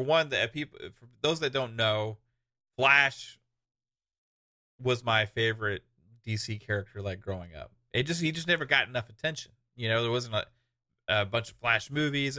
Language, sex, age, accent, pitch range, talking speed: English, male, 30-49, American, 110-130 Hz, 170 wpm